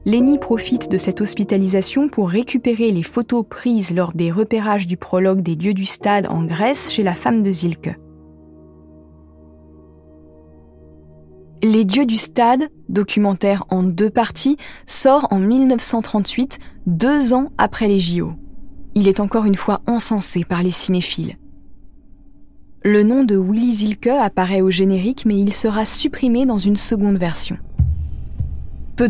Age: 20-39